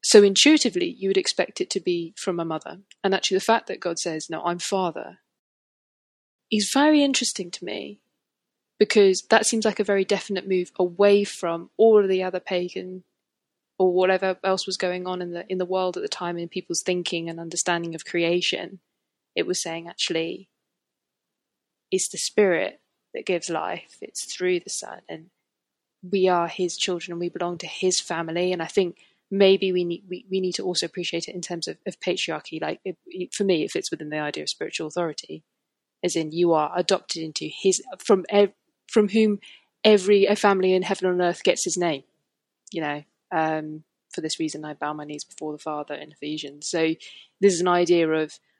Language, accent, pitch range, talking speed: English, British, 165-195 Hz, 190 wpm